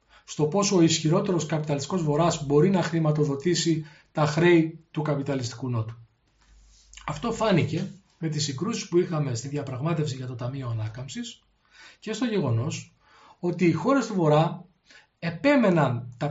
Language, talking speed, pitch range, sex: Greek, 135 wpm, 125-190 Hz, male